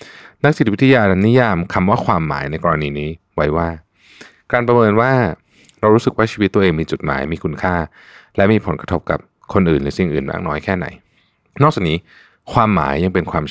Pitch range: 80-110 Hz